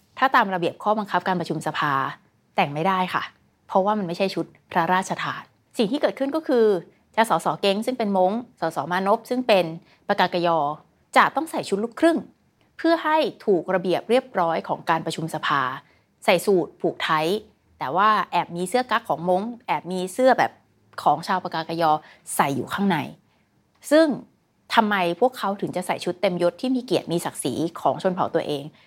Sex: female